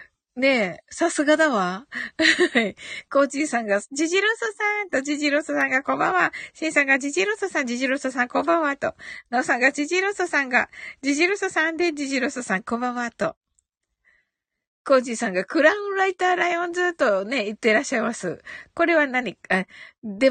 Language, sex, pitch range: Japanese, female, 235-345 Hz